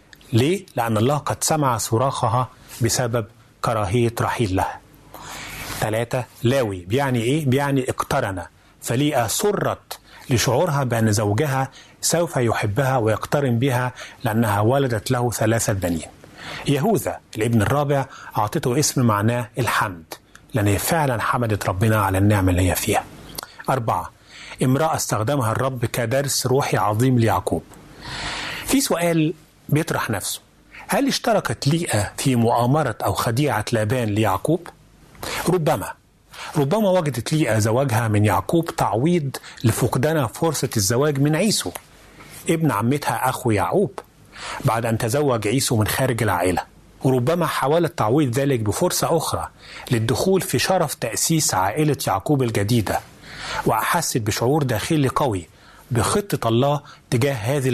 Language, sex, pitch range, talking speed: Arabic, male, 110-145 Hz, 115 wpm